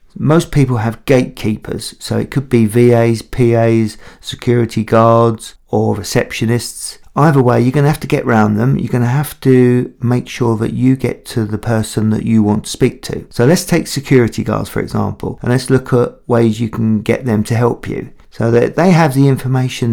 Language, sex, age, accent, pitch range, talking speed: English, male, 40-59, British, 115-140 Hz, 200 wpm